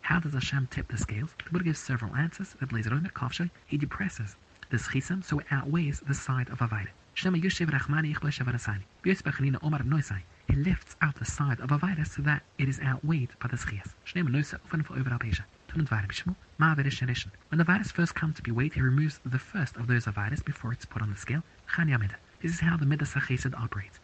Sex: male